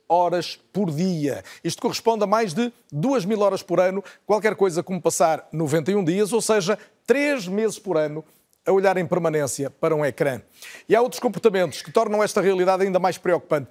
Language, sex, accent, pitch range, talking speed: Portuguese, male, Brazilian, 165-220 Hz, 190 wpm